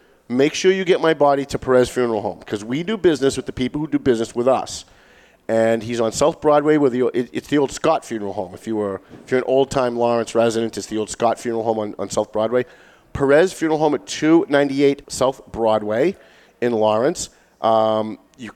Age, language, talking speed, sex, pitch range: 40-59, English, 215 wpm, male, 115-140 Hz